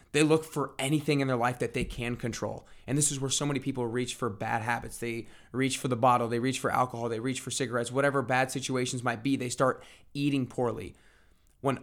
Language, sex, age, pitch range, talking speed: English, male, 20-39, 115-135 Hz, 230 wpm